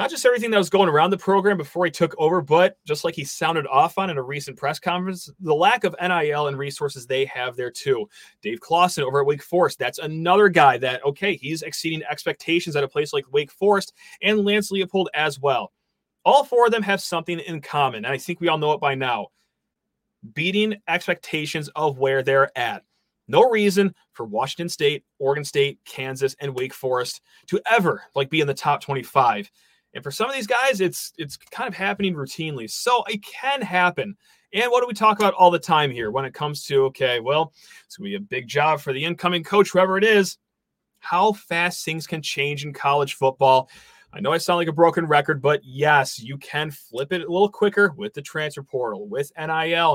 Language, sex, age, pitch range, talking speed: English, male, 30-49, 145-190 Hz, 215 wpm